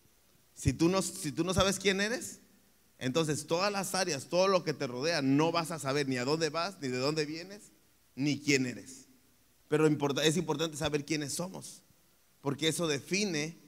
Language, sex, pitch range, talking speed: Spanish, male, 135-195 Hz, 185 wpm